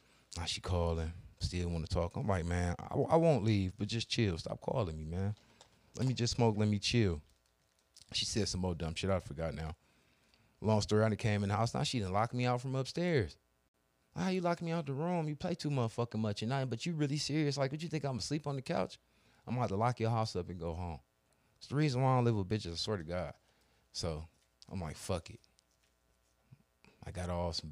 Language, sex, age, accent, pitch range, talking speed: English, male, 30-49, American, 85-120 Hz, 245 wpm